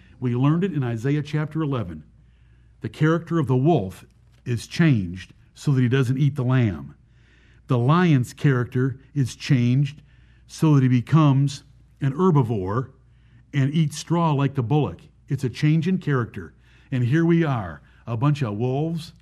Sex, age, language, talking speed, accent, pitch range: male, 50-69, English, 160 wpm, American, 120-155 Hz